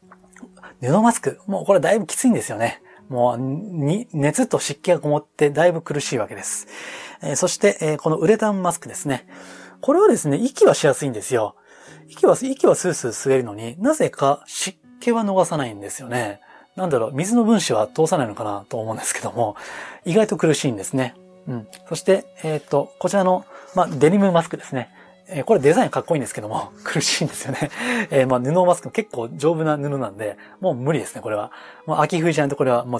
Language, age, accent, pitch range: Japanese, 20-39, native, 135-200 Hz